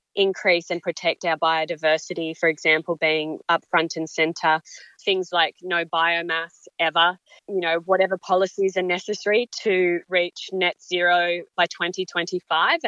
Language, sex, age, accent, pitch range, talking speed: English, female, 20-39, Australian, 170-195 Hz, 135 wpm